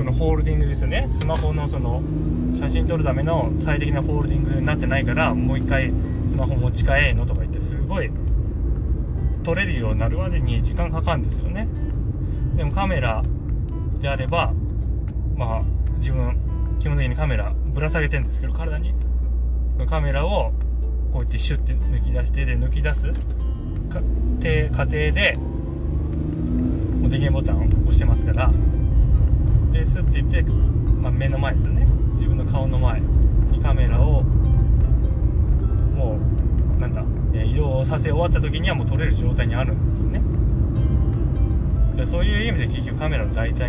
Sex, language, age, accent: male, Japanese, 20-39, native